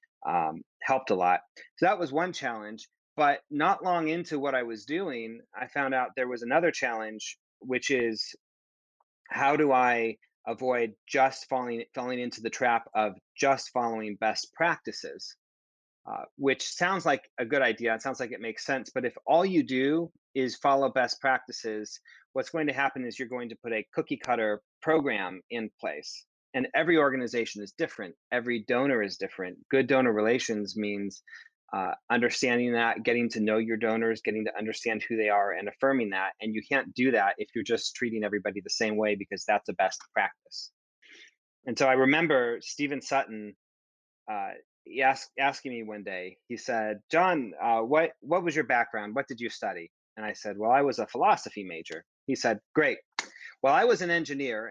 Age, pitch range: 30-49, 110-135 Hz